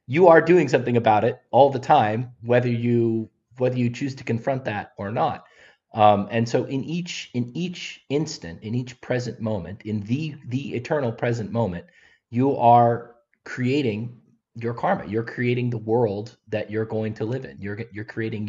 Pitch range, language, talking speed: 105-125 Hz, English, 180 wpm